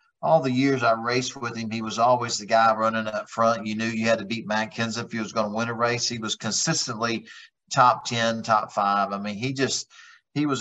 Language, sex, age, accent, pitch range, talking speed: English, male, 50-69, American, 105-125 Hz, 250 wpm